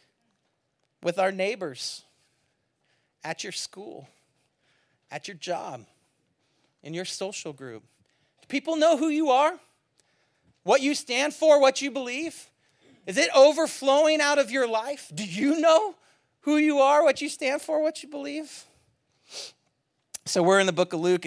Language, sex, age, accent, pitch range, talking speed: English, male, 40-59, American, 215-280 Hz, 150 wpm